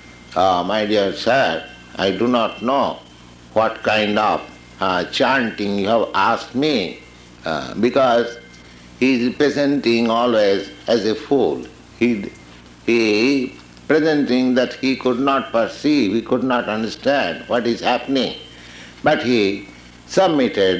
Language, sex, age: English, male, 60-79